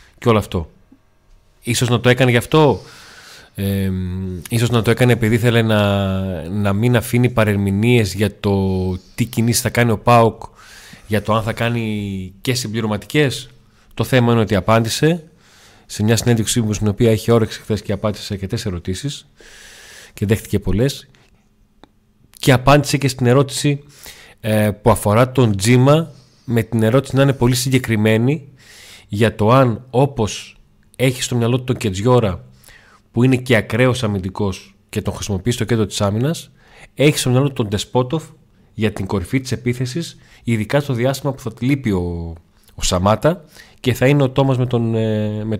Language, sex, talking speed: Greek, male, 165 wpm